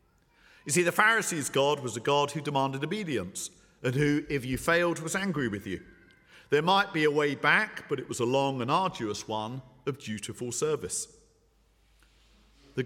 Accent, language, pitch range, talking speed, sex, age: British, English, 110-150 Hz, 175 wpm, male, 50-69